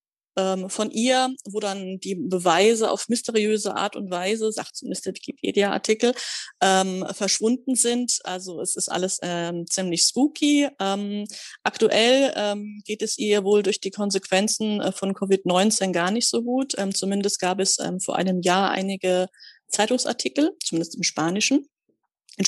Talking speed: 145 wpm